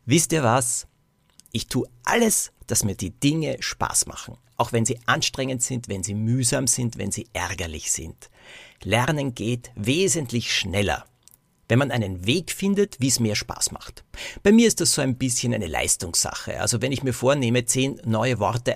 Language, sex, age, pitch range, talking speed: German, male, 50-69, 110-140 Hz, 180 wpm